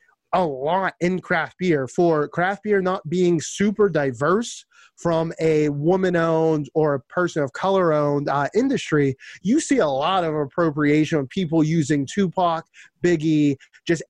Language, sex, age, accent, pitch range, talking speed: English, male, 30-49, American, 145-180 Hz, 155 wpm